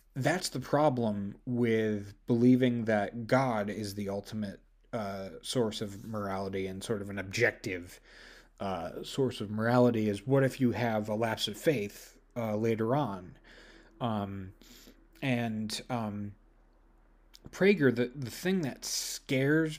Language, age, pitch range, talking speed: English, 30-49, 105-130 Hz, 135 wpm